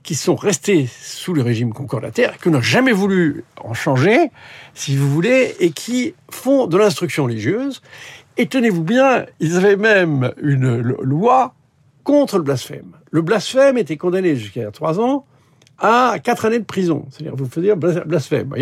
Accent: French